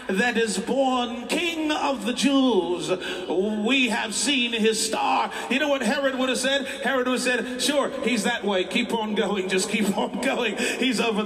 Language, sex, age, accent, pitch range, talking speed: English, male, 50-69, American, 230-340 Hz, 190 wpm